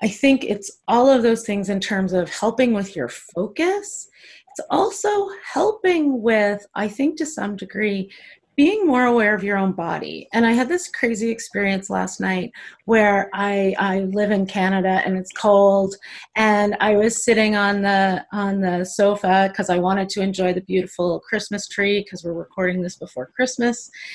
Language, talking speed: English, 175 wpm